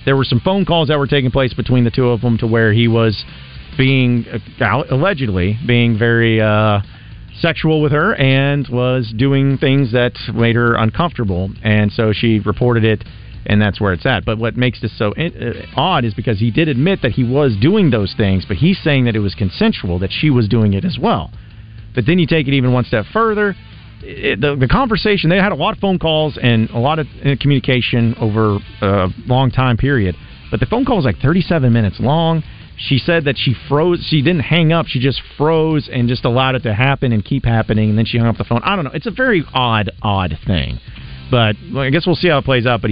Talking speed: 225 wpm